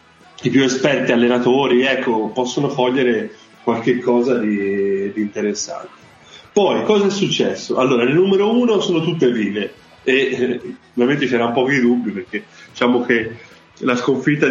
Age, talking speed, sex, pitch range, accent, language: 20-39, 140 wpm, male, 115-145 Hz, native, Italian